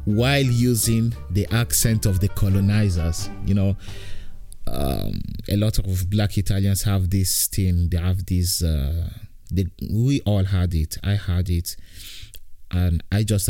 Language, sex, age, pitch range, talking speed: Italian, male, 30-49, 90-105 Hz, 145 wpm